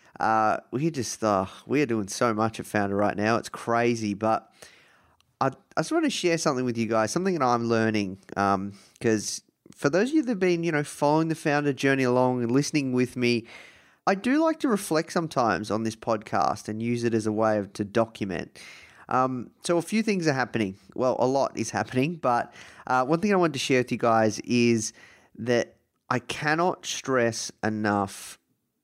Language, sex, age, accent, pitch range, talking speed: English, male, 20-39, Australian, 110-135 Hz, 200 wpm